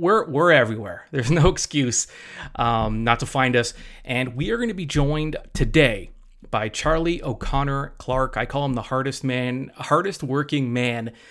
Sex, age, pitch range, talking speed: male, 30-49, 115-160 Hz, 170 wpm